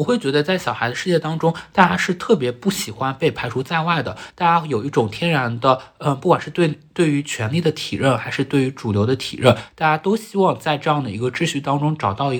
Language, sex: Chinese, male